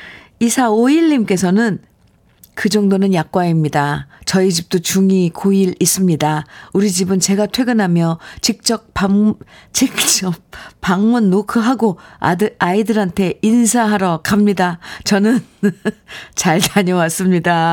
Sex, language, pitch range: female, Korean, 185-230 Hz